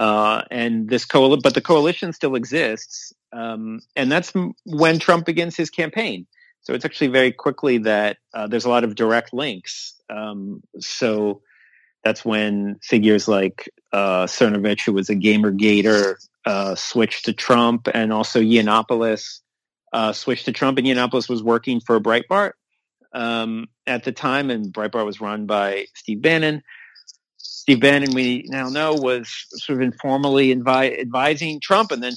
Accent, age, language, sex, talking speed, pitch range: American, 40-59, English, male, 160 wpm, 110-150 Hz